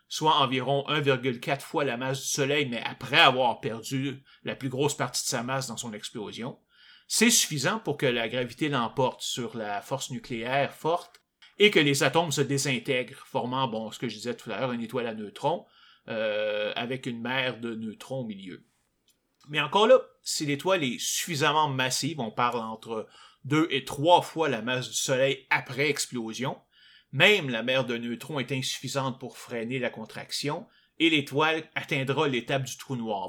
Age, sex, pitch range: 30-49, male, 125-155 Hz